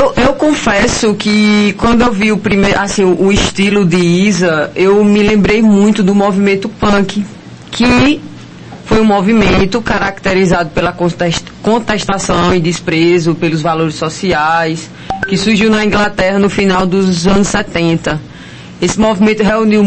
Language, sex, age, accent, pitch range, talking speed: Portuguese, female, 20-39, Brazilian, 180-220 Hz, 135 wpm